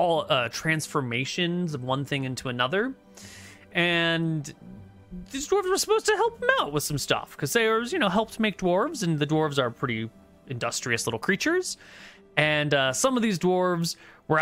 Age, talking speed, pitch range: 30-49, 175 wpm, 115-165 Hz